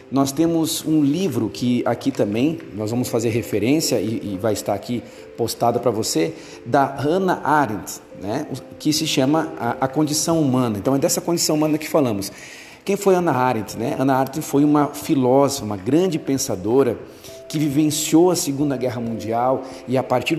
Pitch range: 120-155 Hz